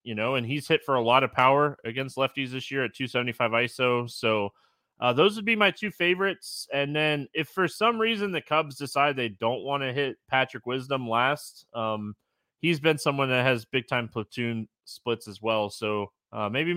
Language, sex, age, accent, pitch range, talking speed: English, male, 20-39, American, 115-155 Hz, 205 wpm